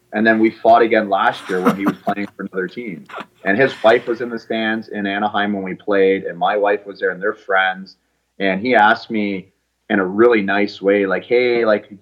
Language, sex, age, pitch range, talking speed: English, male, 30-49, 95-130 Hz, 235 wpm